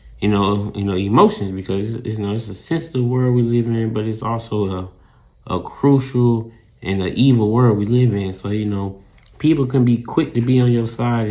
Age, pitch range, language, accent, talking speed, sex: 20-39, 100-115 Hz, English, American, 225 wpm, male